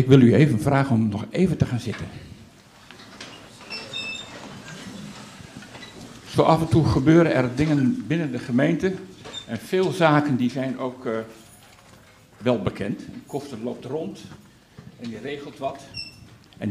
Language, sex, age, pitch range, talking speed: Dutch, male, 60-79, 120-145 Hz, 135 wpm